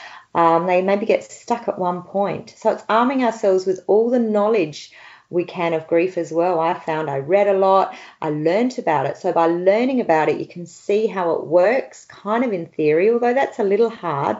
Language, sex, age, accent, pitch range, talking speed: English, female, 40-59, Australian, 165-205 Hz, 215 wpm